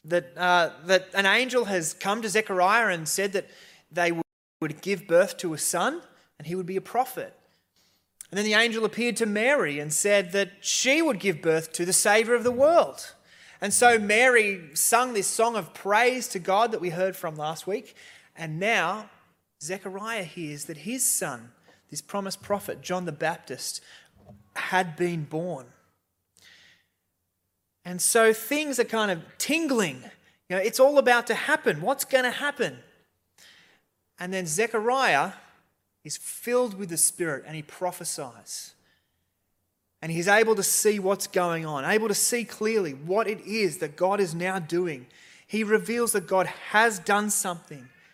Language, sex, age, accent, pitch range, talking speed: English, male, 20-39, Australian, 160-220 Hz, 165 wpm